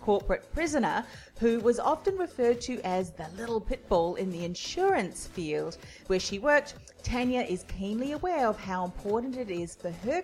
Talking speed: 170 wpm